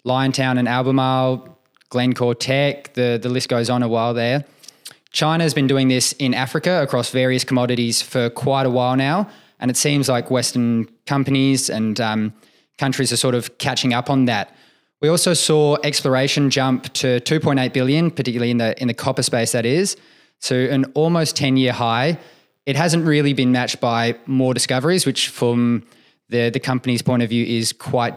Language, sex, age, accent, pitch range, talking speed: English, male, 20-39, Australian, 120-135 Hz, 185 wpm